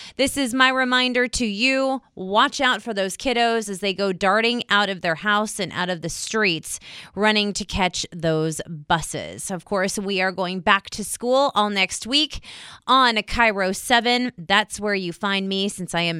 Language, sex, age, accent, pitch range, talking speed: English, female, 30-49, American, 180-235 Hz, 190 wpm